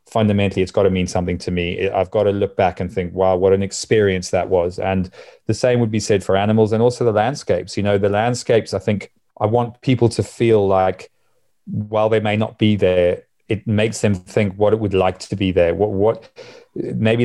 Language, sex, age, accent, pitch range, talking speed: English, male, 30-49, British, 100-125 Hz, 225 wpm